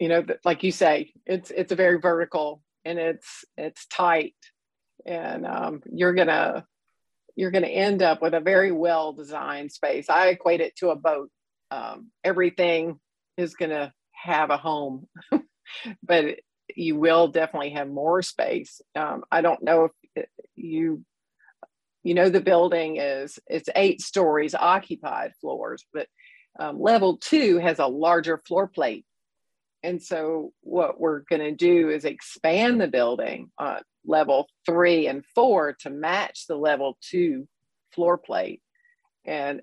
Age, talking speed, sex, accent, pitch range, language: 50-69, 150 wpm, female, American, 150-185 Hz, English